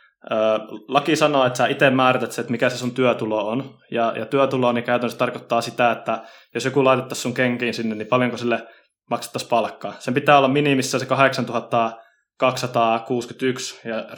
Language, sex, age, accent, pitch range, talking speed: Finnish, male, 20-39, native, 115-130 Hz, 170 wpm